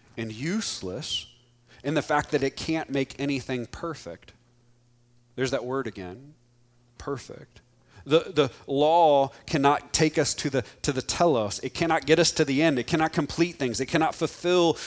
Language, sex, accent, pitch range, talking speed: English, male, American, 120-155 Hz, 165 wpm